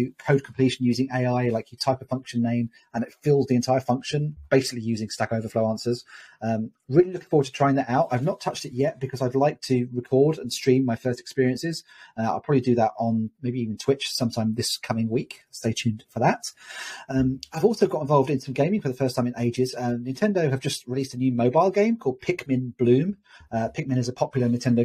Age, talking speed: 30-49, 225 wpm